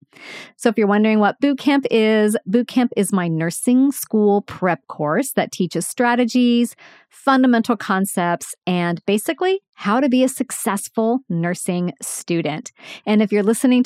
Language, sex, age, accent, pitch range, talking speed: English, female, 40-59, American, 180-250 Hz, 140 wpm